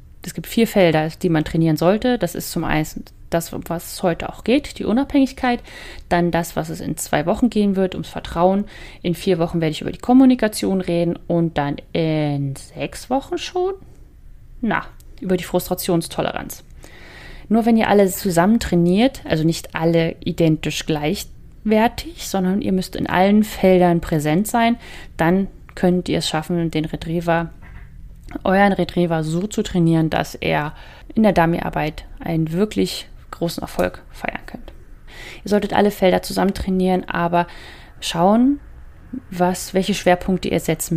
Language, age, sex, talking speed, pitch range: German, 30-49, female, 150 wpm, 165-200 Hz